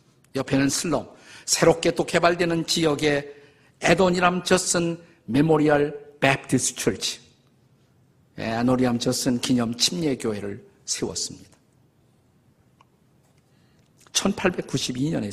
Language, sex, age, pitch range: Korean, male, 50-69, 125-165 Hz